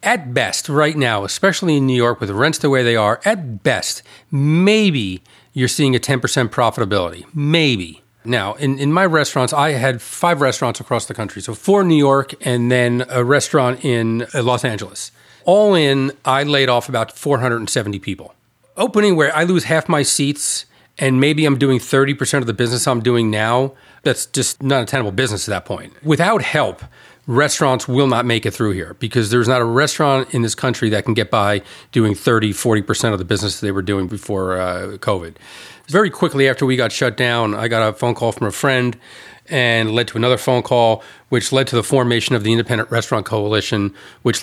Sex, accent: male, American